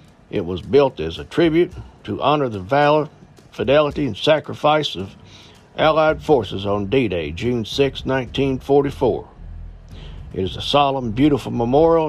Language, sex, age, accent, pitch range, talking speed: English, male, 60-79, American, 105-145 Hz, 135 wpm